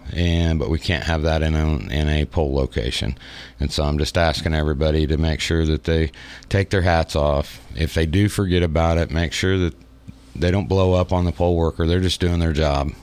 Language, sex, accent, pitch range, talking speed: English, male, American, 80-90 Hz, 225 wpm